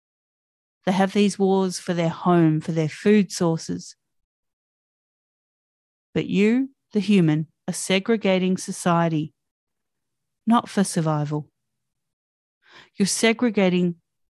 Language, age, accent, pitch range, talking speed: English, 40-59, Australian, 160-210 Hz, 95 wpm